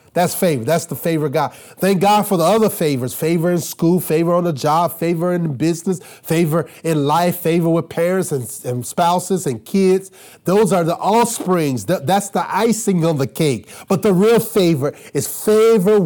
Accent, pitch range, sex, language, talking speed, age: American, 150-200 Hz, male, English, 185 wpm, 30-49